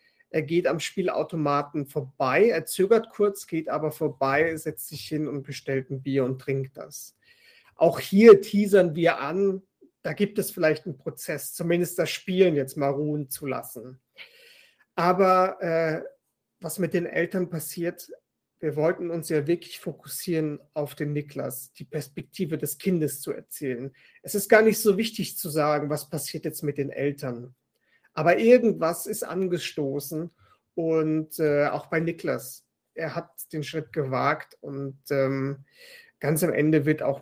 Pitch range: 140-175 Hz